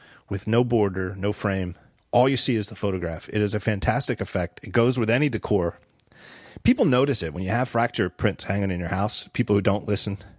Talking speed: 215 wpm